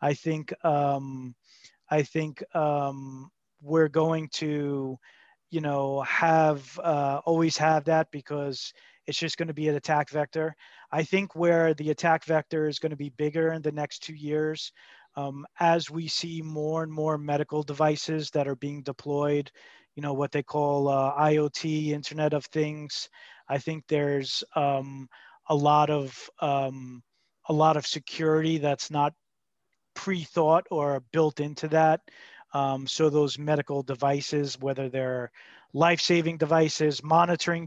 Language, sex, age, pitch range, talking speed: English, male, 30-49, 145-160 Hz, 150 wpm